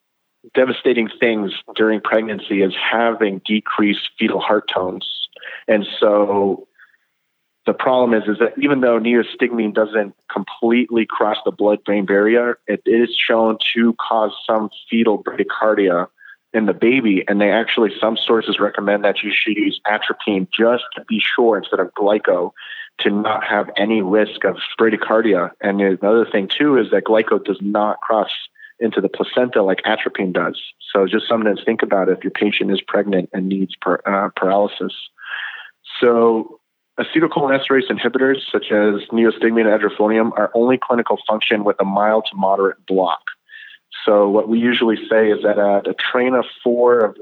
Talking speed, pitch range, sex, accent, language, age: 160 wpm, 105-120 Hz, male, American, English, 30-49